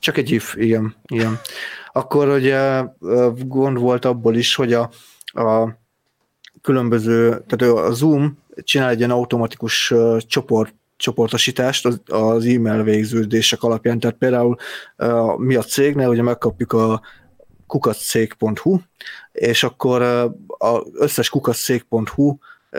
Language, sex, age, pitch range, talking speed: Hungarian, male, 30-49, 115-130 Hz, 110 wpm